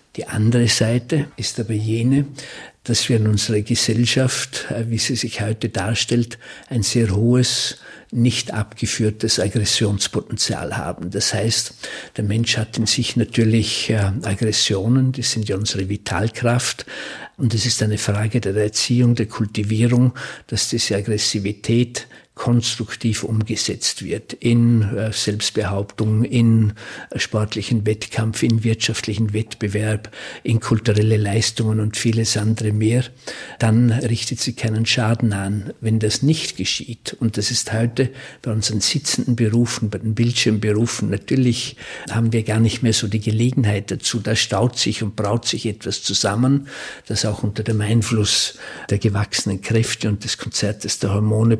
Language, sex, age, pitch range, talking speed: German, male, 50-69, 105-120 Hz, 140 wpm